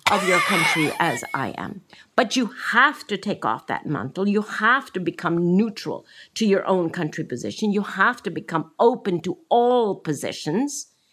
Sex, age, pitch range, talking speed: female, 50-69, 155-220 Hz, 175 wpm